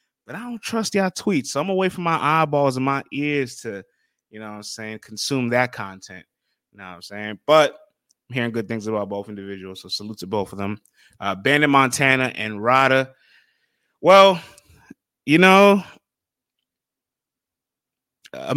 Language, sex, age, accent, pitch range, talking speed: English, male, 20-39, American, 105-130 Hz, 170 wpm